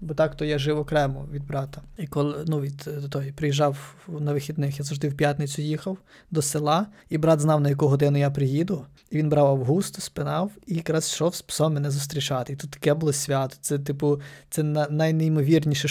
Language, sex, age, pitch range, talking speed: Ukrainian, male, 20-39, 145-165 Hz, 195 wpm